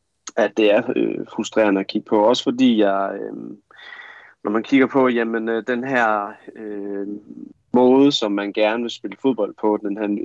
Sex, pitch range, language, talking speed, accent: male, 100-120 Hz, Danish, 165 wpm, native